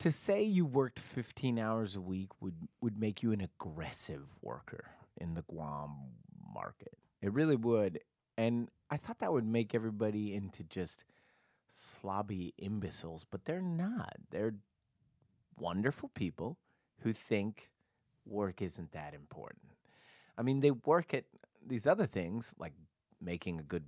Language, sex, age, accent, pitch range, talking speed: English, male, 30-49, American, 85-120 Hz, 145 wpm